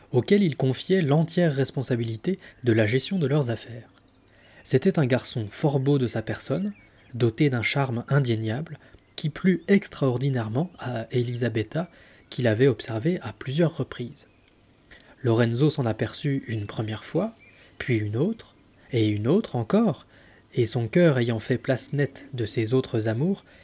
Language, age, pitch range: French, 20-39, 115-145 Hz